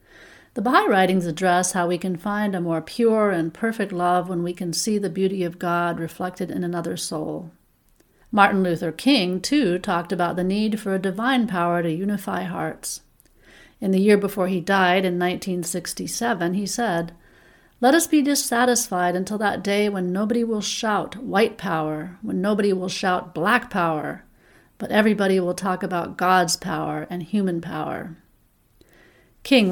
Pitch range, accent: 175-210 Hz, American